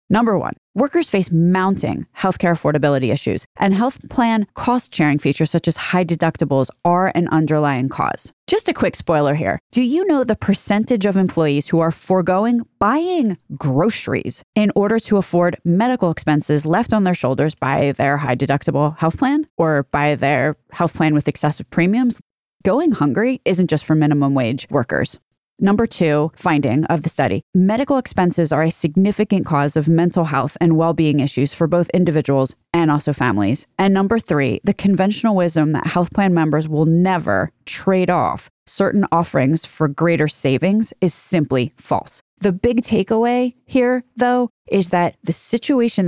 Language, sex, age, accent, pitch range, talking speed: English, female, 20-39, American, 150-205 Hz, 165 wpm